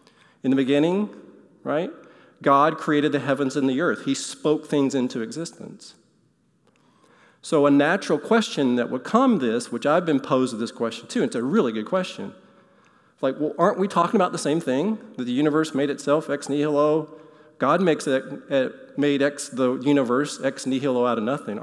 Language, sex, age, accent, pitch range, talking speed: English, male, 40-59, American, 130-160 Hz, 185 wpm